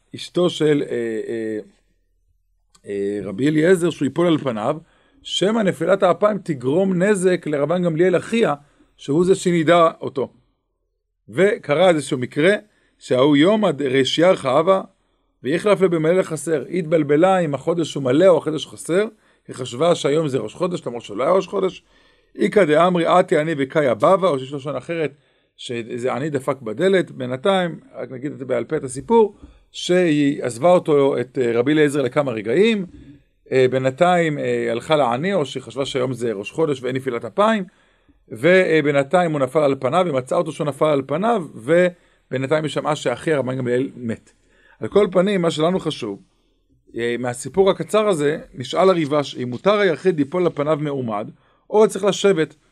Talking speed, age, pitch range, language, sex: 145 wpm, 50-69, 130-180 Hz, English, male